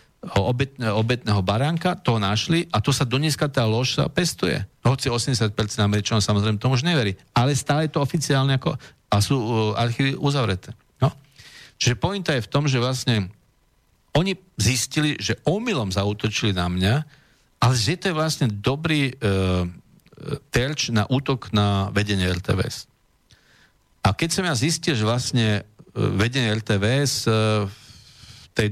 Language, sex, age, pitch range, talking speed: Slovak, male, 50-69, 105-140 Hz, 145 wpm